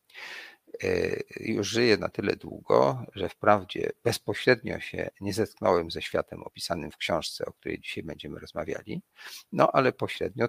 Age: 50-69